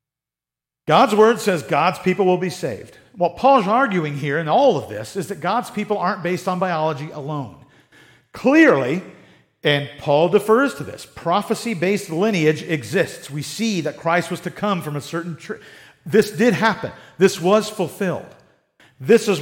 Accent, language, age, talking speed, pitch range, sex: American, English, 50-69, 165 wpm, 155-210 Hz, male